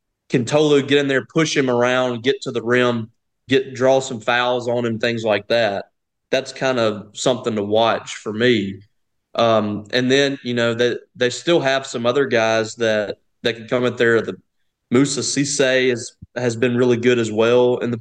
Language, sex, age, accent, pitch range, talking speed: English, male, 20-39, American, 115-135 Hz, 195 wpm